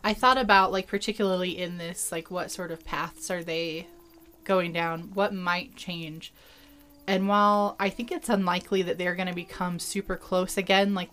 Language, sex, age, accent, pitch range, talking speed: English, female, 20-39, American, 175-205 Hz, 185 wpm